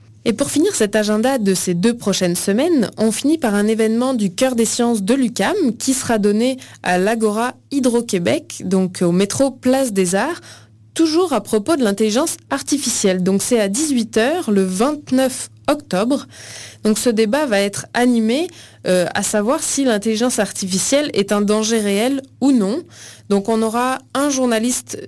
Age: 20-39